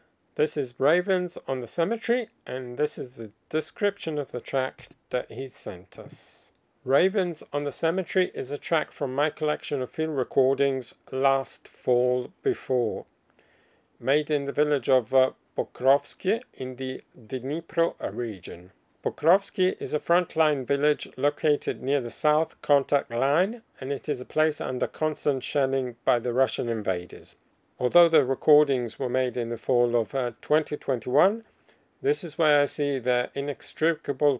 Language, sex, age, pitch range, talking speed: English, male, 50-69, 130-155 Hz, 150 wpm